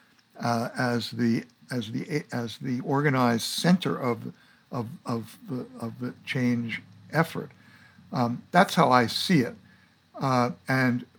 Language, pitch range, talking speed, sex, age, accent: English, 115-145 Hz, 135 wpm, male, 60-79, American